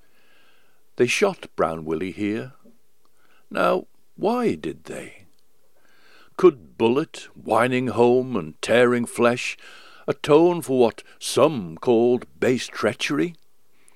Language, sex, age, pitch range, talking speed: English, male, 60-79, 110-170 Hz, 100 wpm